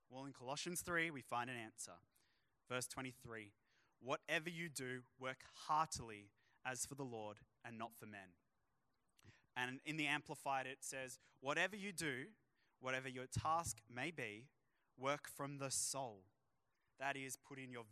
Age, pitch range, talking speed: 20-39, 115-140 Hz, 155 wpm